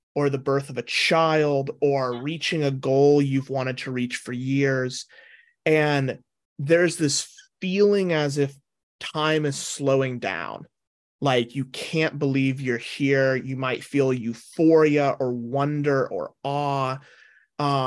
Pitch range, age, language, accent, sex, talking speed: 130-155 Hz, 30-49, English, American, male, 135 wpm